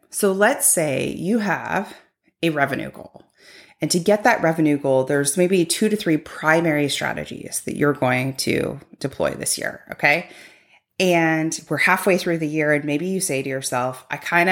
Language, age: English, 30-49